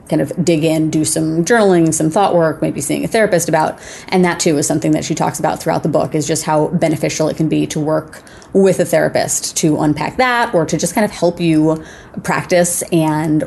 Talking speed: 225 wpm